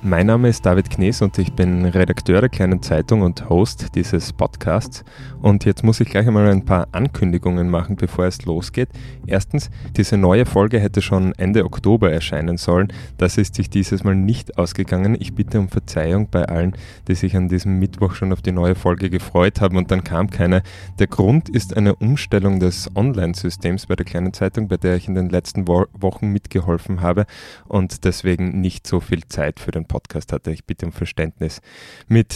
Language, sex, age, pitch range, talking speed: German, male, 20-39, 90-105 Hz, 195 wpm